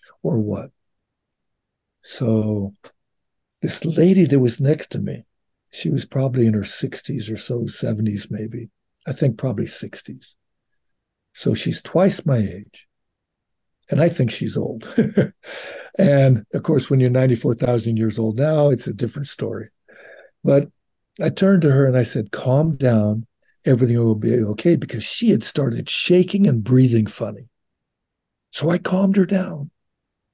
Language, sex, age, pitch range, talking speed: English, male, 60-79, 115-165 Hz, 145 wpm